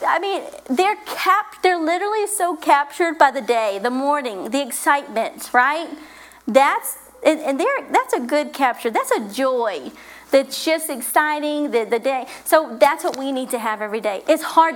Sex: female